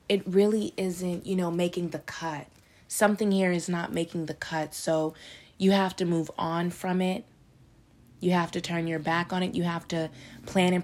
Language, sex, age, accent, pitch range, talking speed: English, female, 20-39, American, 160-185 Hz, 200 wpm